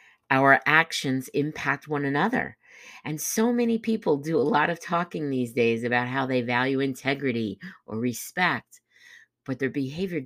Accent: American